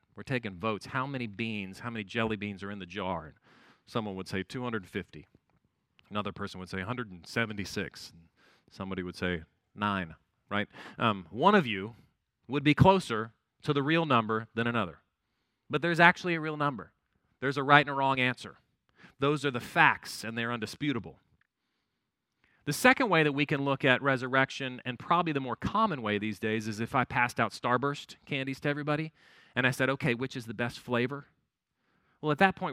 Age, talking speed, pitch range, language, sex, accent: 40-59, 185 wpm, 110-150 Hz, English, male, American